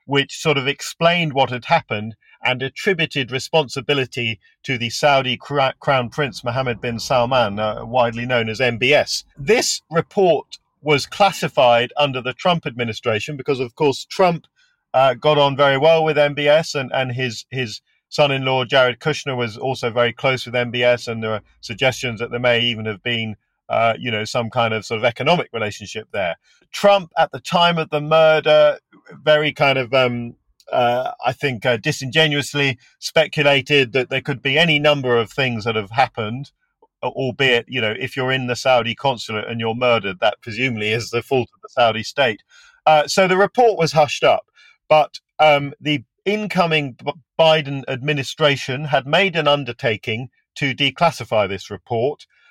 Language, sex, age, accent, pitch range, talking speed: English, male, 40-59, British, 120-150 Hz, 165 wpm